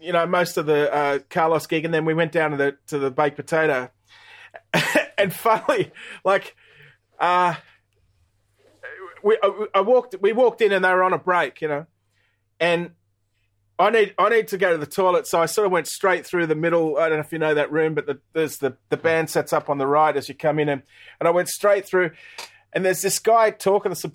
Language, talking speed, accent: English, 230 wpm, Australian